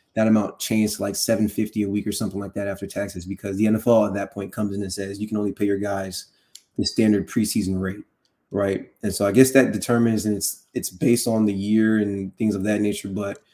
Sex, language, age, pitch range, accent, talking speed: male, English, 20-39, 100-115 Hz, American, 240 wpm